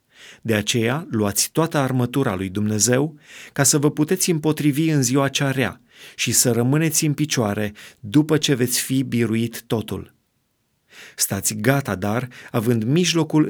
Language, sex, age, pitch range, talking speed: Romanian, male, 30-49, 115-150 Hz, 140 wpm